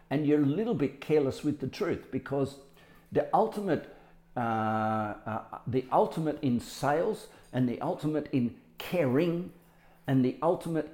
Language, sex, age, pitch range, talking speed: English, male, 50-69, 125-150 Hz, 145 wpm